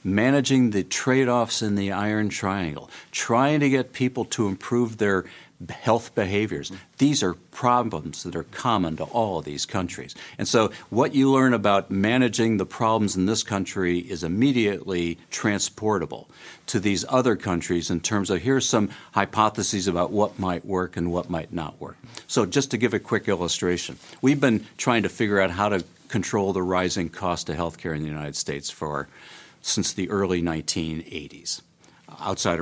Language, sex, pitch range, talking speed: English, male, 90-115 Hz, 170 wpm